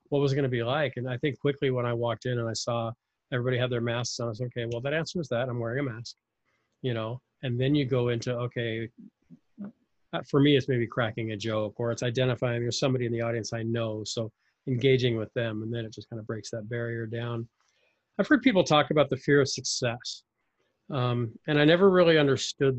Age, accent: 40-59, American